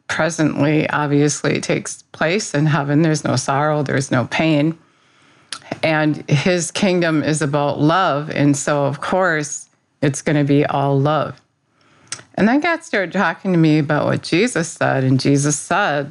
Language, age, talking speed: English, 50-69, 160 wpm